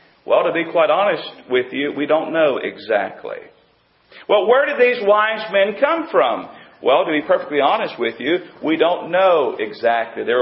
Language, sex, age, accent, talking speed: English, male, 40-59, American, 180 wpm